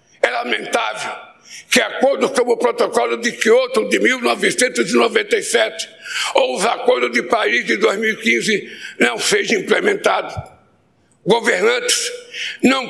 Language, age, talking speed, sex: Portuguese, 60-79, 105 wpm, male